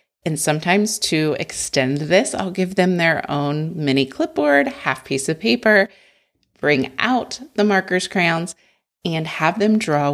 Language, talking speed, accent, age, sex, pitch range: English, 150 wpm, American, 30-49, female, 145-205 Hz